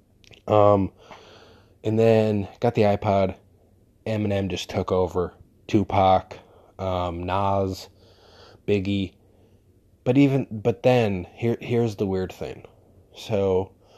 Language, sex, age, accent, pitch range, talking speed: English, male, 20-39, American, 95-105 Hz, 105 wpm